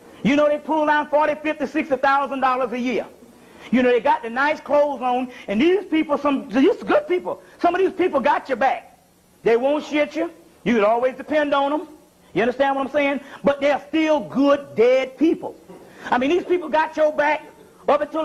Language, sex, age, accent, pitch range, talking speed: English, male, 40-59, American, 235-305 Hz, 210 wpm